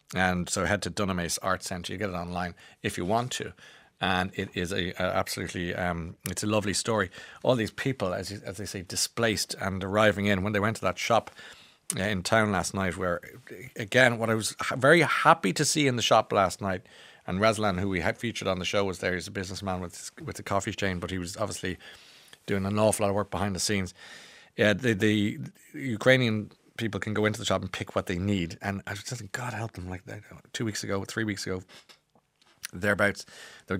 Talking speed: 225 wpm